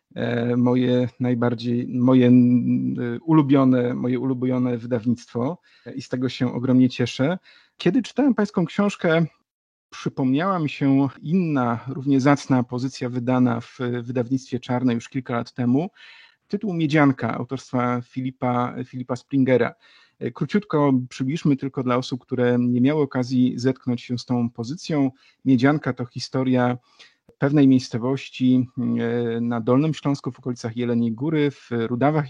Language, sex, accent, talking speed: Polish, male, native, 120 wpm